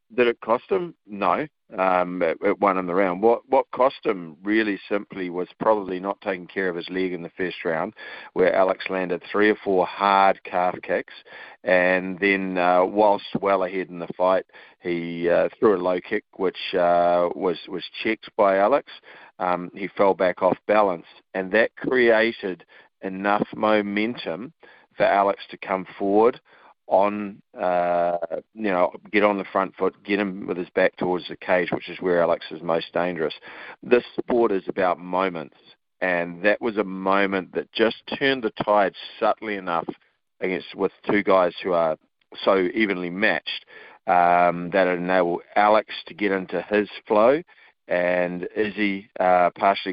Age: 40-59